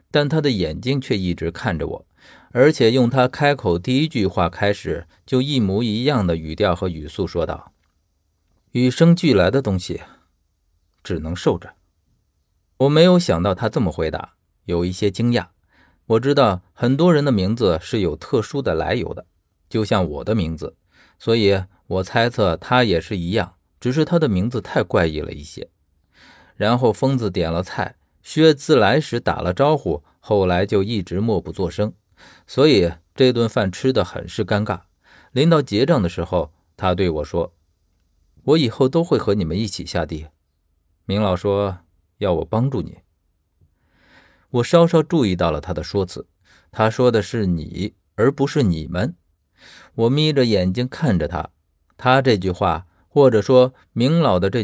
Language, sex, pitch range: Chinese, male, 85-125 Hz